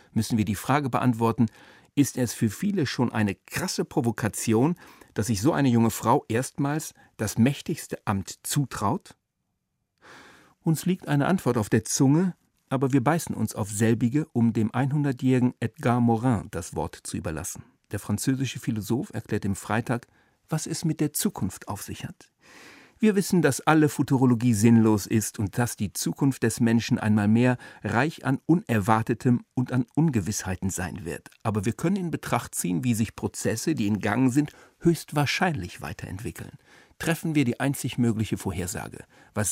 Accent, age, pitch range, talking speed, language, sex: German, 50-69, 110-140 Hz, 160 wpm, German, male